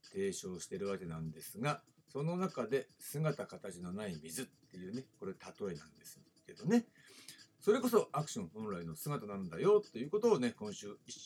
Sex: male